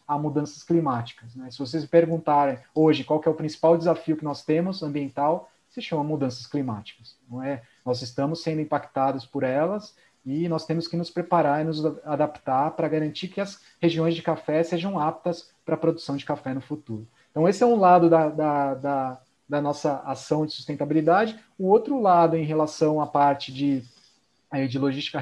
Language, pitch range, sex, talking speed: Portuguese, 140-165 Hz, male, 190 wpm